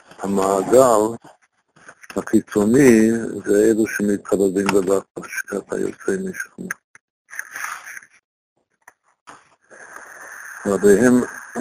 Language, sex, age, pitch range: Hebrew, male, 60-79, 100-115 Hz